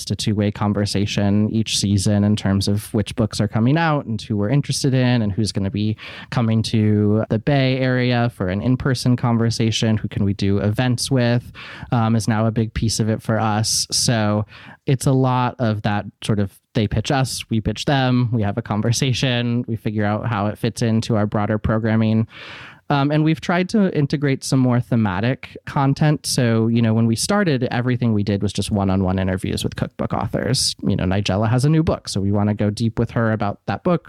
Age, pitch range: 20-39, 105-130 Hz